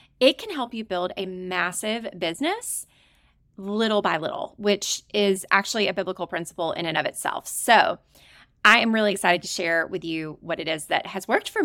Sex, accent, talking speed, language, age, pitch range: female, American, 190 wpm, English, 30-49, 180-250 Hz